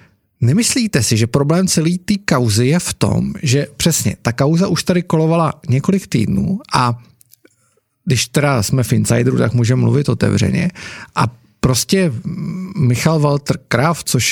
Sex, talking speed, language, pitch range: male, 145 wpm, Czech, 115-175 Hz